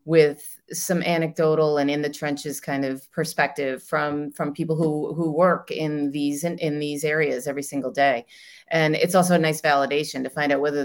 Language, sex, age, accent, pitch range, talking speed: English, female, 30-49, American, 140-160 Hz, 195 wpm